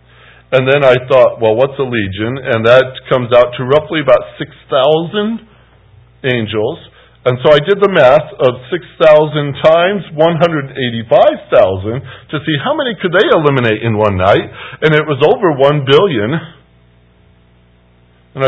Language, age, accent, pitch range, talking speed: English, 50-69, American, 105-170 Hz, 145 wpm